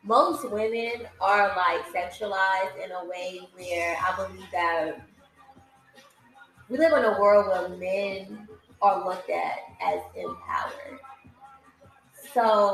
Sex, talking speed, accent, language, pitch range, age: female, 120 wpm, American, English, 190-215 Hz, 20-39